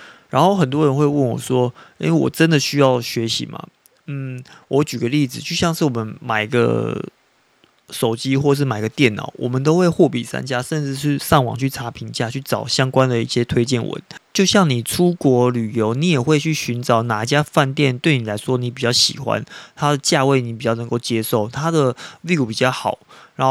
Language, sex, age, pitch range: Chinese, male, 20-39, 120-150 Hz